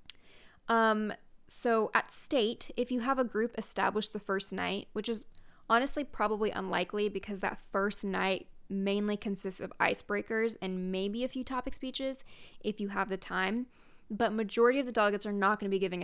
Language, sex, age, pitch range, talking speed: English, female, 20-39, 195-230 Hz, 180 wpm